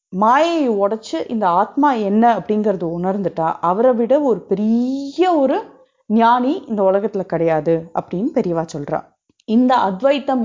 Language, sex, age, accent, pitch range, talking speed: Tamil, female, 30-49, native, 190-275 Hz, 120 wpm